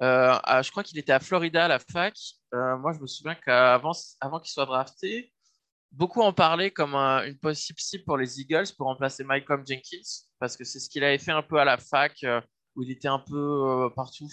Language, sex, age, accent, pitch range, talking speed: French, male, 20-39, French, 130-160 Hz, 235 wpm